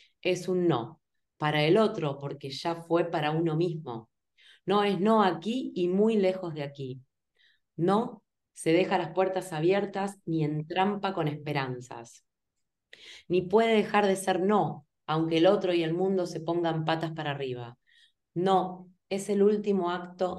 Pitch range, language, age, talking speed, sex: 150-185 Hz, Spanish, 20-39, 160 wpm, female